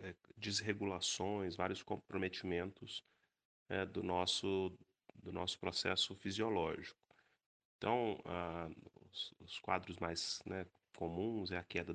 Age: 30-49